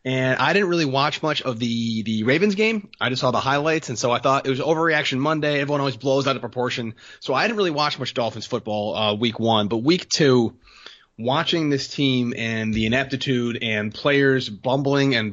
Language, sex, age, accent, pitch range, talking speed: English, male, 30-49, American, 120-145 Hz, 210 wpm